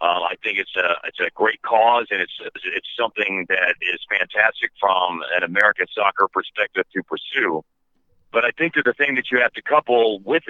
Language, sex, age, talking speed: English, male, 50-69, 200 wpm